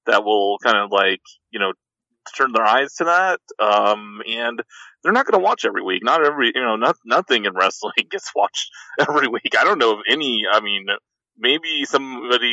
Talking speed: 200 wpm